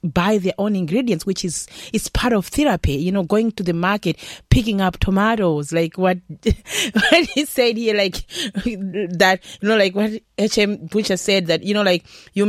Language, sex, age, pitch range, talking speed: English, female, 30-49, 180-250 Hz, 185 wpm